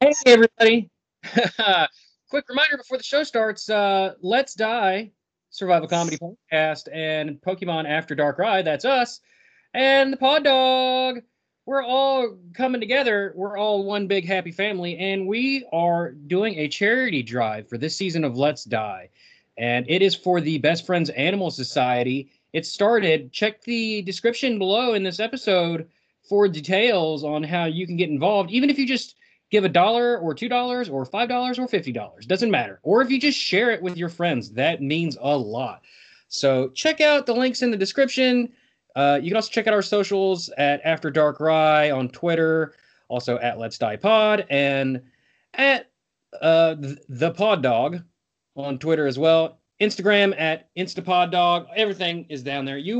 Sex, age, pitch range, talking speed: male, 30-49, 155-230 Hz, 170 wpm